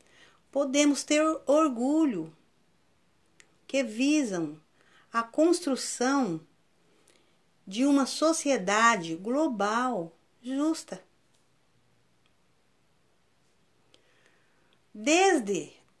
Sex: female